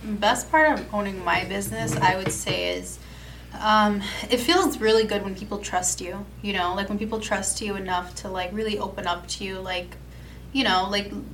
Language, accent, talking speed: English, American, 200 wpm